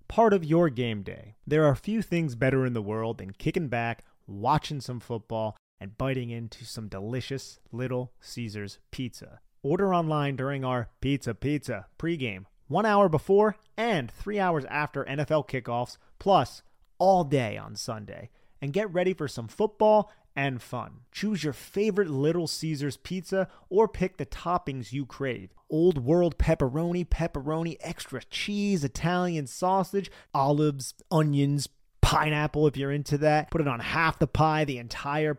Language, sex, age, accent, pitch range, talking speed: English, male, 30-49, American, 125-180 Hz, 155 wpm